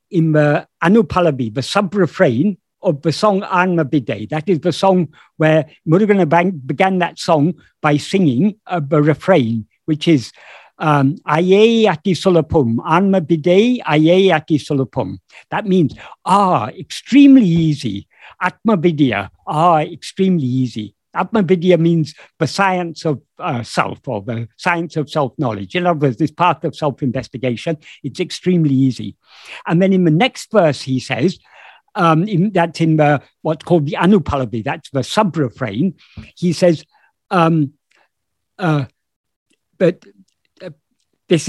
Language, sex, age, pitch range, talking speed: English, male, 60-79, 145-185 Hz, 130 wpm